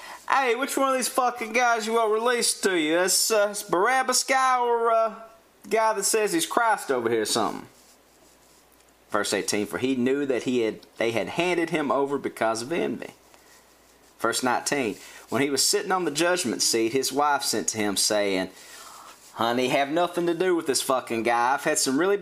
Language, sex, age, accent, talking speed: English, male, 40-59, American, 195 wpm